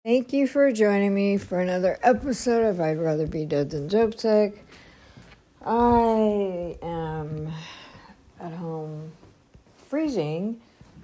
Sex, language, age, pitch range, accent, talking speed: female, English, 60-79, 125-200 Hz, American, 110 wpm